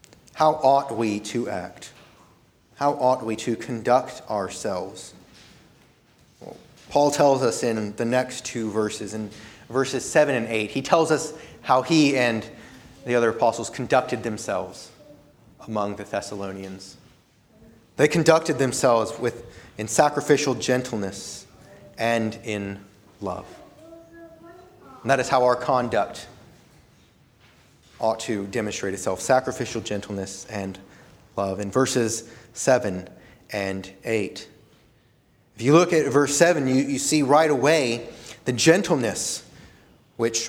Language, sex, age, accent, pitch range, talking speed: English, male, 30-49, American, 110-145 Hz, 120 wpm